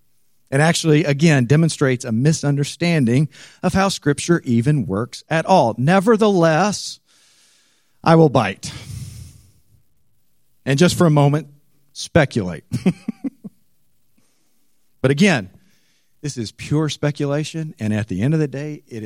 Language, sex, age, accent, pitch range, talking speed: English, male, 50-69, American, 125-165 Hz, 115 wpm